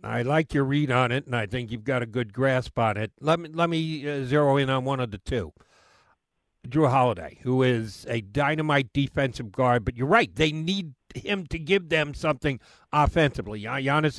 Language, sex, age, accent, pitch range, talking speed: English, male, 50-69, American, 125-170 Hz, 205 wpm